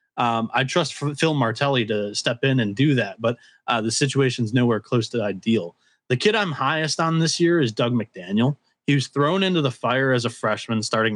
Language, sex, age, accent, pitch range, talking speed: English, male, 20-39, American, 120-145 Hz, 210 wpm